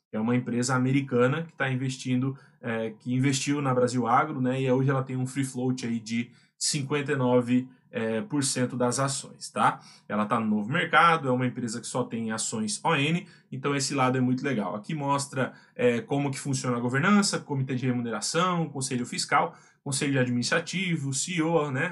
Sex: male